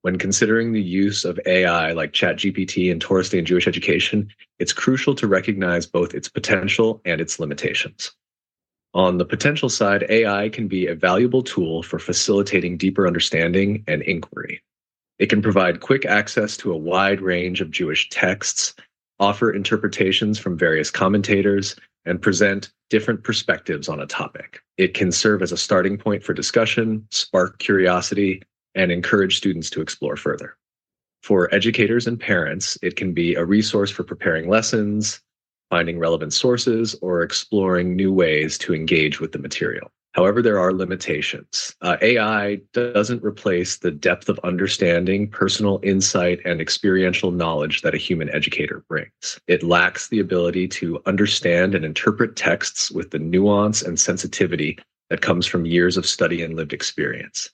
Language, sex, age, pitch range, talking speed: English, male, 30-49, 90-105 Hz, 155 wpm